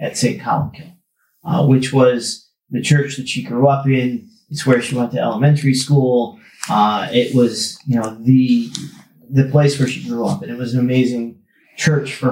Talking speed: 190 wpm